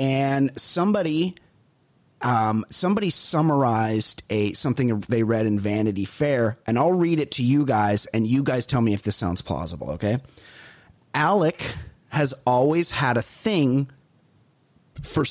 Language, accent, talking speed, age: English, American, 140 wpm, 30-49